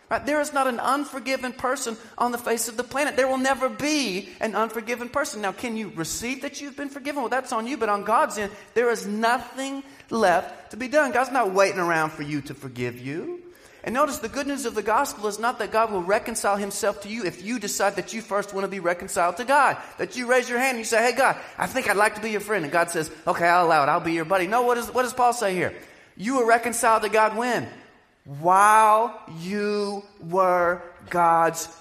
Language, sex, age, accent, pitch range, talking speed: English, male, 30-49, American, 180-245 Hz, 240 wpm